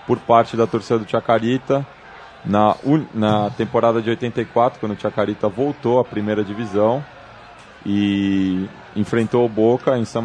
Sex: male